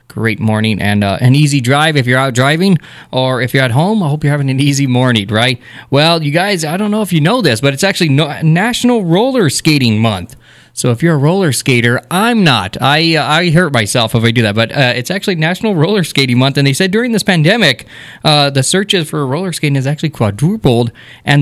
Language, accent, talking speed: English, American, 235 wpm